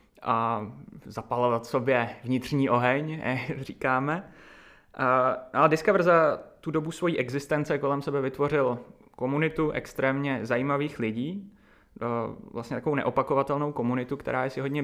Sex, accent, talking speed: male, native, 125 wpm